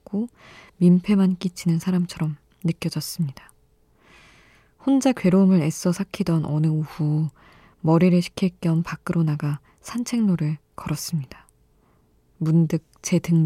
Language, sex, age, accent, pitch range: Korean, female, 20-39, native, 160-185 Hz